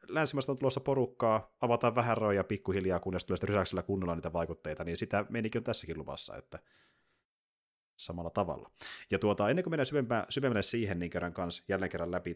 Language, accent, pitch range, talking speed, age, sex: Finnish, native, 90-125 Hz, 175 wpm, 30-49, male